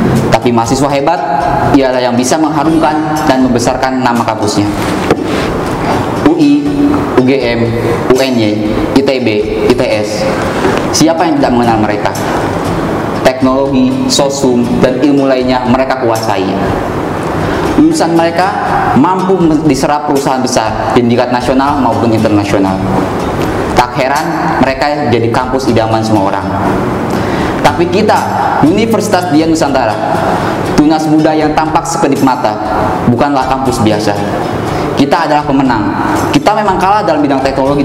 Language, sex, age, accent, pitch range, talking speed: Indonesian, male, 20-39, native, 115-155 Hz, 110 wpm